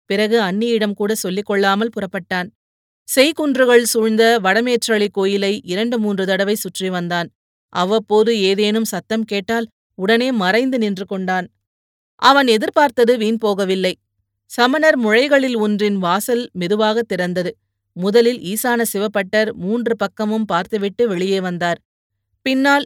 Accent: native